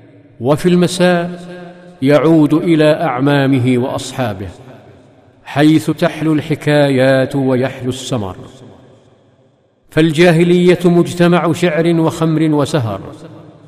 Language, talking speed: Arabic, 70 wpm